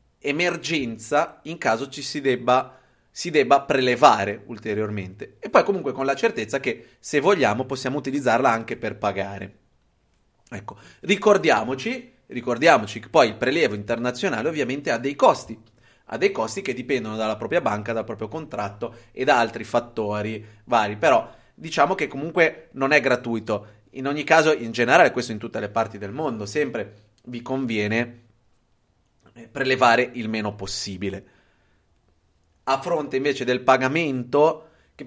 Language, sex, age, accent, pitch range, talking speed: Italian, male, 30-49, native, 105-130 Hz, 145 wpm